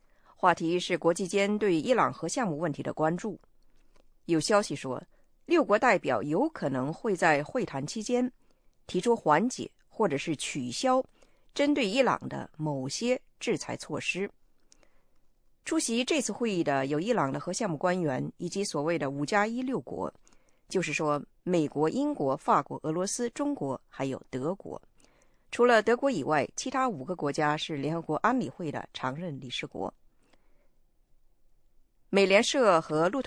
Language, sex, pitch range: English, female, 150-235 Hz